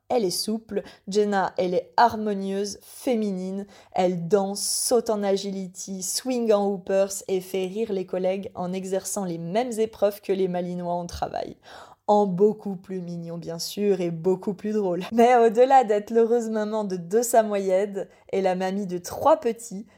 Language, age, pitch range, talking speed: French, 20-39, 190-225 Hz, 165 wpm